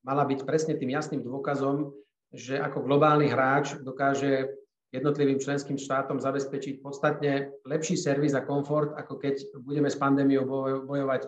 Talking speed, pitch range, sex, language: 140 wpm, 130-150 Hz, male, Slovak